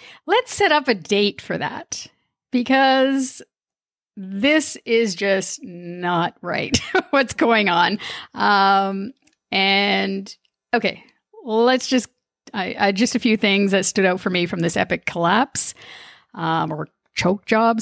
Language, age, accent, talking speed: English, 50-69, American, 135 wpm